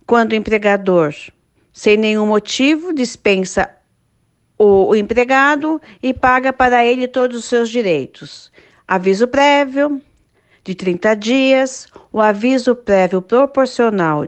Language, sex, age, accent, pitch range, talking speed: Portuguese, female, 50-69, Brazilian, 195-250 Hz, 115 wpm